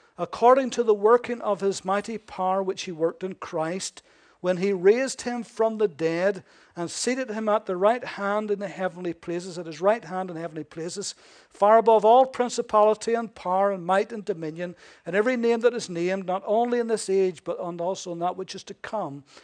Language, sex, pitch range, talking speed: English, male, 170-220 Hz, 205 wpm